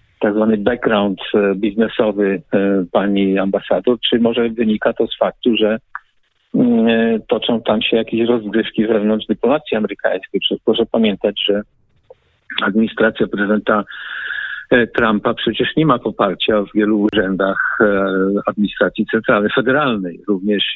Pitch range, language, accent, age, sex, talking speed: 100-115 Hz, Polish, native, 50-69, male, 115 wpm